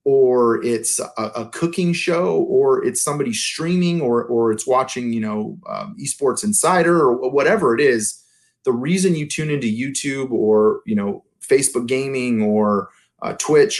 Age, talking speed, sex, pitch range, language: 30-49, 160 wpm, male, 115-160 Hz, English